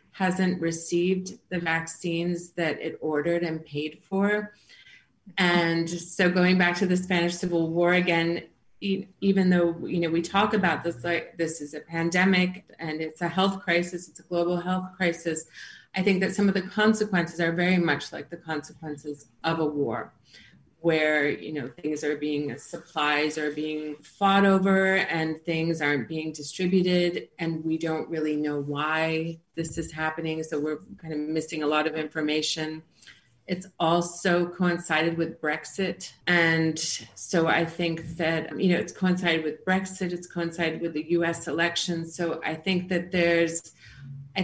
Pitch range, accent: 155-180 Hz, American